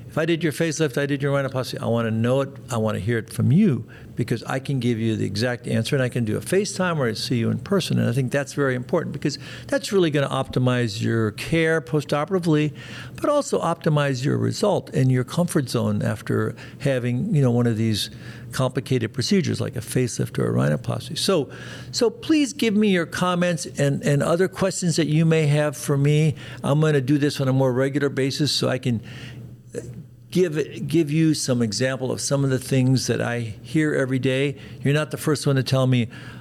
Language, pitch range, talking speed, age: English, 120-150 Hz, 220 wpm, 60-79